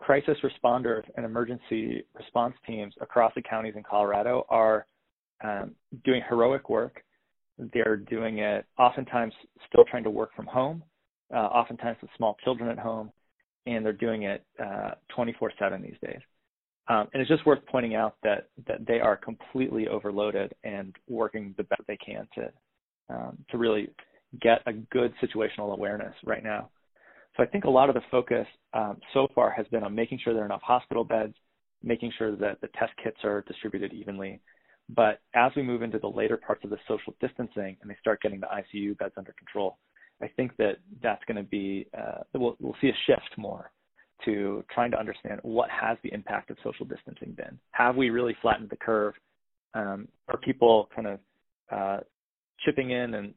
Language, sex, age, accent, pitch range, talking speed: English, male, 30-49, American, 105-125 Hz, 180 wpm